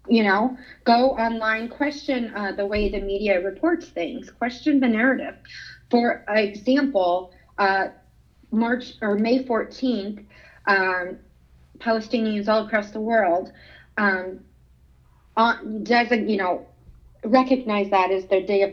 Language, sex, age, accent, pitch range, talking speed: English, female, 30-49, American, 185-225 Hz, 120 wpm